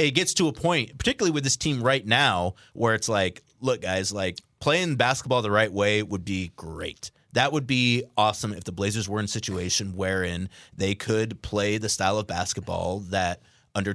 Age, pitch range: 30-49, 100-140 Hz